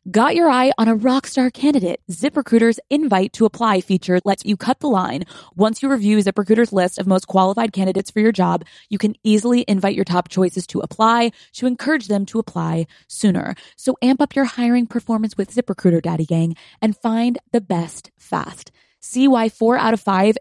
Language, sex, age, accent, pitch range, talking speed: English, female, 20-39, American, 180-235 Hz, 195 wpm